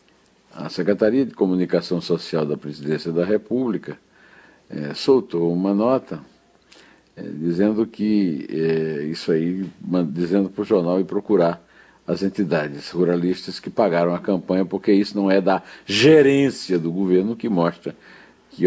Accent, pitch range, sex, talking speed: Brazilian, 80-95 Hz, male, 140 wpm